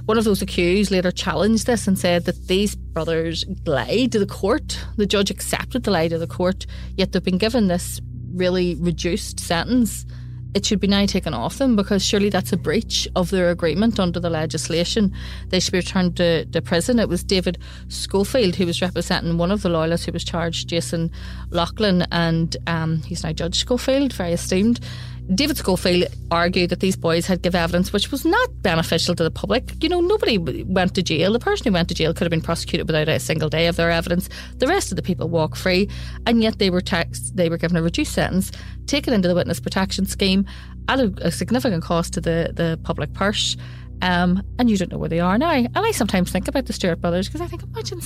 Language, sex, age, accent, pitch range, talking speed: English, female, 30-49, Irish, 165-200 Hz, 215 wpm